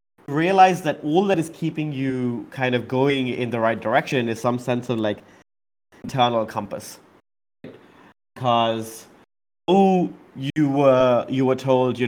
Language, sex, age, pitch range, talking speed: English, male, 20-39, 110-145 Hz, 145 wpm